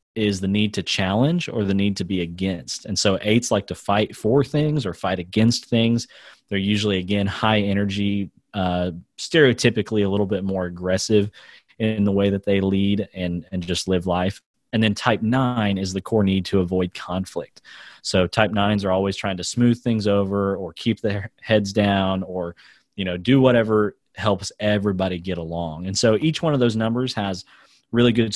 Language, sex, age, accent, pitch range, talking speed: English, male, 30-49, American, 95-115 Hz, 195 wpm